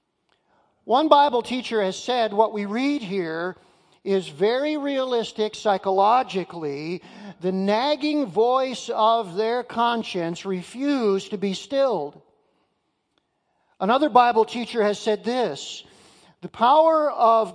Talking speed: 110 wpm